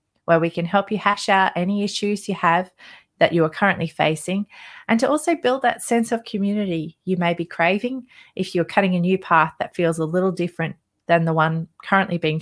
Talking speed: 215 wpm